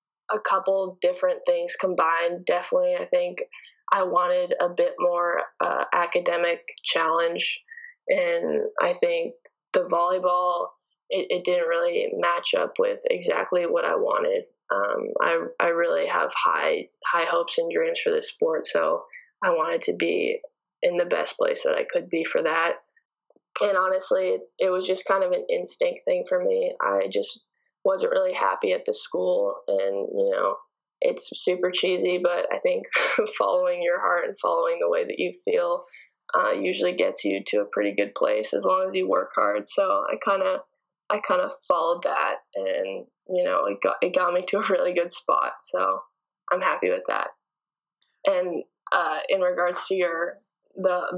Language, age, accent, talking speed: English, 10-29, American, 175 wpm